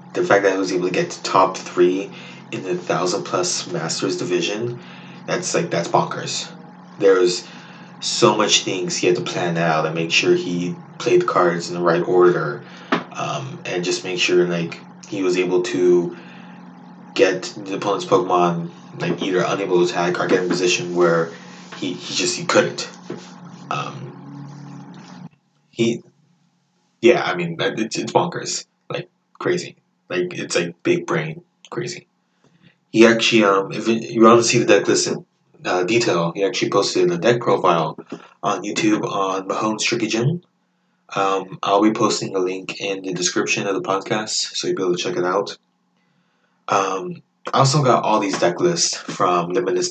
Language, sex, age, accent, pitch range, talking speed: English, male, 20-39, American, 90-120 Hz, 170 wpm